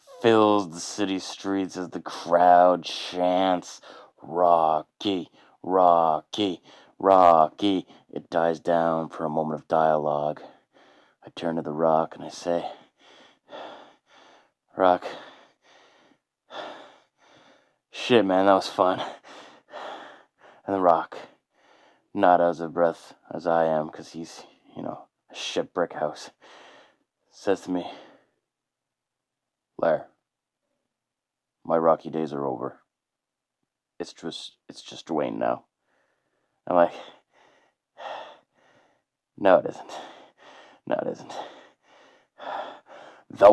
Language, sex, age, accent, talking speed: English, male, 20-39, American, 100 wpm